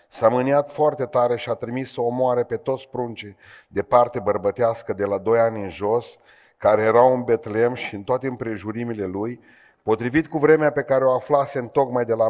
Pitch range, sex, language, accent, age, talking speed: 115-145 Hz, male, Romanian, native, 40-59, 205 wpm